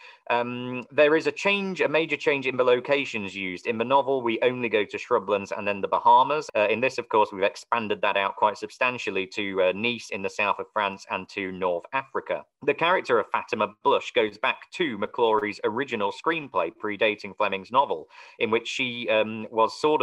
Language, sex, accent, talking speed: English, male, British, 200 wpm